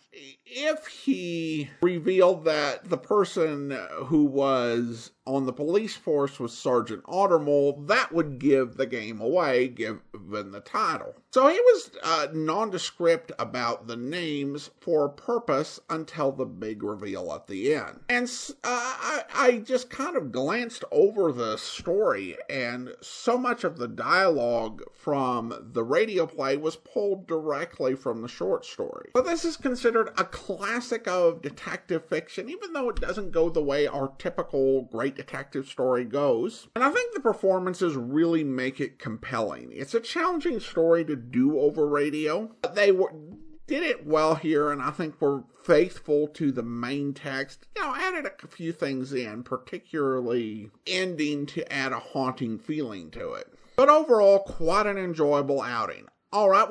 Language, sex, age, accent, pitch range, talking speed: English, male, 50-69, American, 135-215 Hz, 155 wpm